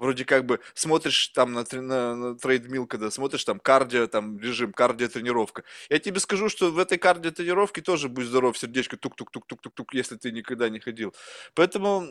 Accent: native